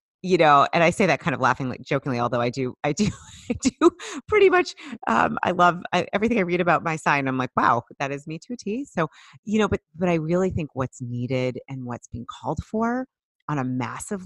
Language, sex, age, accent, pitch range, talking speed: English, female, 30-49, American, 135-190 Hz, 235 wpm